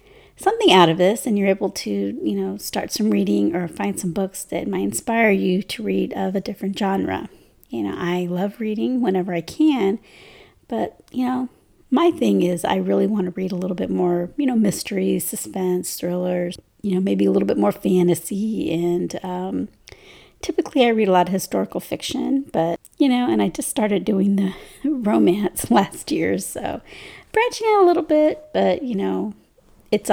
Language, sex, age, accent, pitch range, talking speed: English, female, 30-49, American, 175-240 Hz, 190 wpm